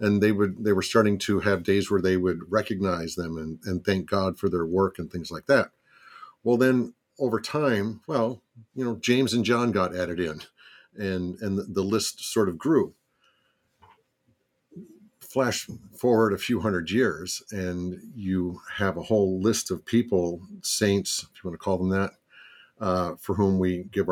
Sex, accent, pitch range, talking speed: male, American, 95-115 Hz, 180 wpm